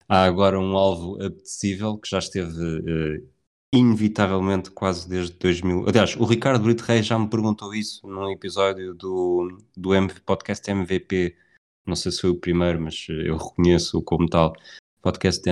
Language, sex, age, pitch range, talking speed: Portuguese, male, 20-39, 90-105 Hz, 155 wpm